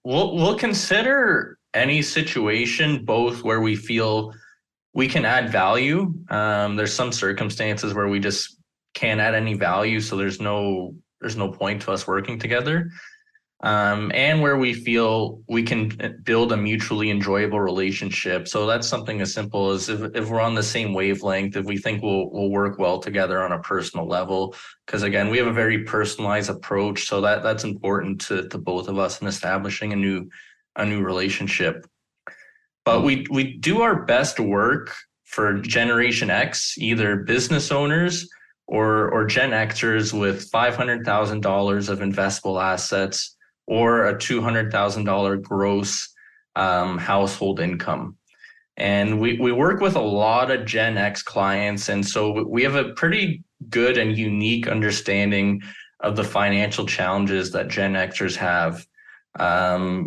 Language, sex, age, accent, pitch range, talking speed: English, male, 20-39, American, 100-120 Hz, 155 wpm